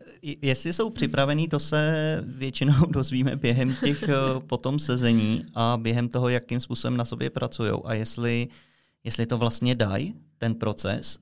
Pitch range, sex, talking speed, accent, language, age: 110-125 Hz, male, 145 wpm, native, Czech, 20-39